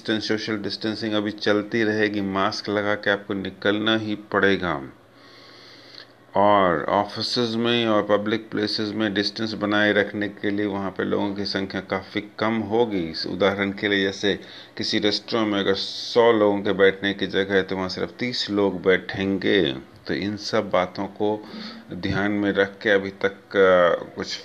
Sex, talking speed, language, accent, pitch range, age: male, 165 wpm, Hindi, native, 95-110 Hz, 40-59